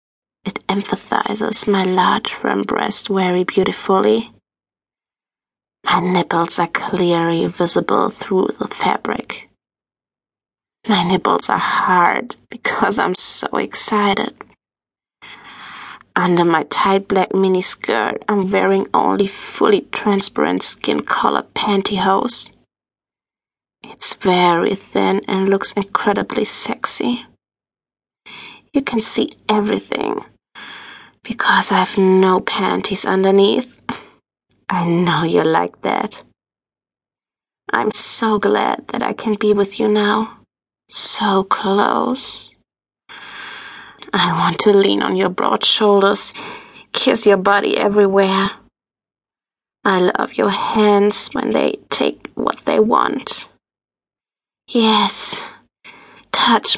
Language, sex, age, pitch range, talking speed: English, female, 30-49, 185-210 Hz, 100 wpm